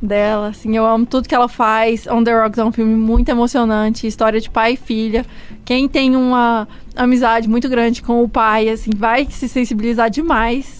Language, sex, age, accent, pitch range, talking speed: Portuguese, female, 20-39, Brazilian, 220-245 Hz, 195 wpm